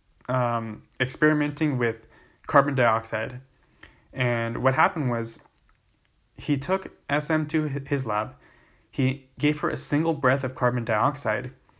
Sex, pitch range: male, 115-140 Hz